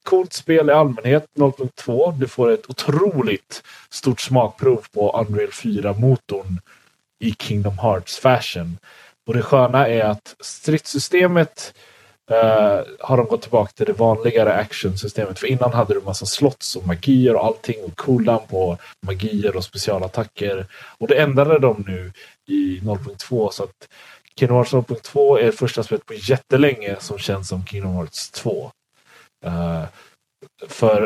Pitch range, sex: 95-130 Hz, male